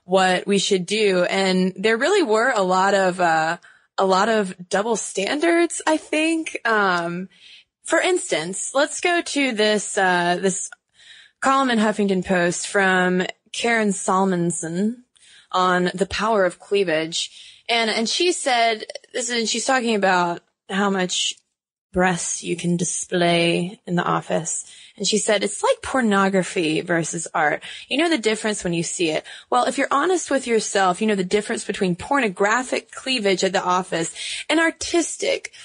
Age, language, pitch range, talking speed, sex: 20-39, English, 185-260 Hz, 155 wpm, female